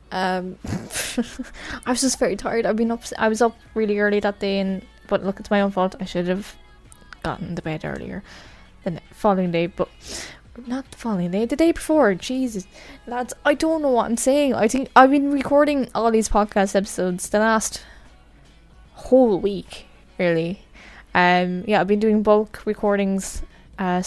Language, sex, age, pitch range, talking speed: English, female, 10-29, 195-245 Hz, 180 wpm